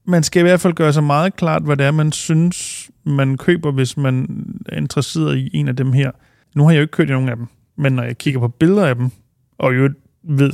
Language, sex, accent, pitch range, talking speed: Danish, male, native, 125-145 Hz, 255 wpm